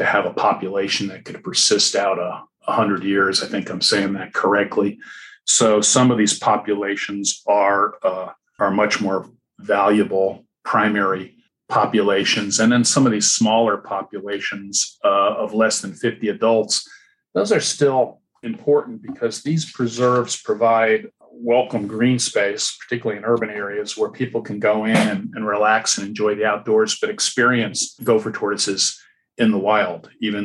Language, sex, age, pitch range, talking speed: English, male, 50-69, 100-140 Hz, 155 wpm